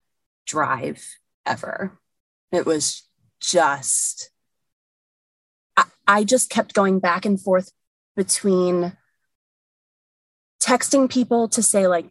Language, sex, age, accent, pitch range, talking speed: English, female, 20-39, American, 165-205 Hz, 95 wpm